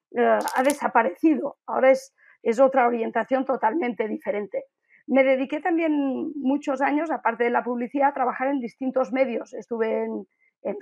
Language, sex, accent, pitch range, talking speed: English, female, Spanish, 245-300 Hz, 150 wpm